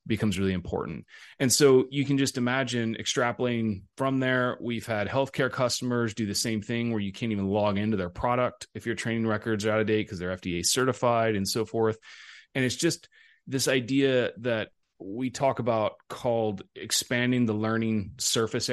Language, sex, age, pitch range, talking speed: English, male, 30-49, 100-120 Hz, 185 wpm